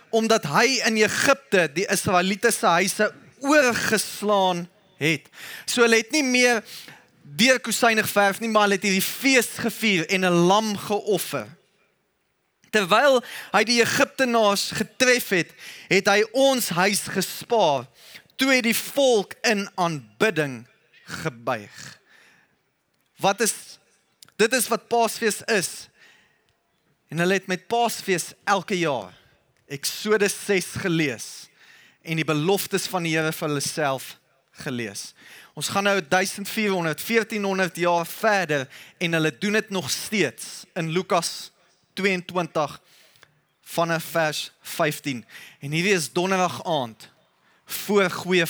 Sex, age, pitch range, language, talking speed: male, 20-39, 165-215 Hz, English, 120 wpm